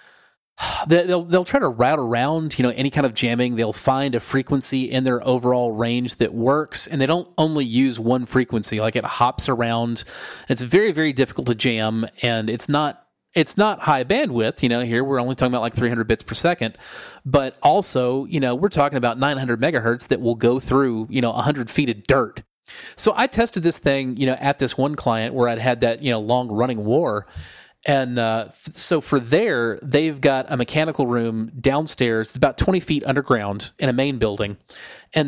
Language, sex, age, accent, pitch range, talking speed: English, male, 30-49, American, 120-145 Hz, 205 wpm